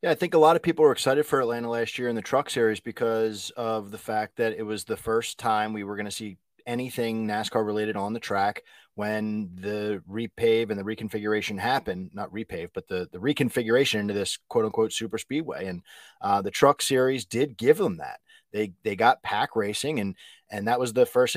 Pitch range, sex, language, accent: 105-125 Hz, male, English, American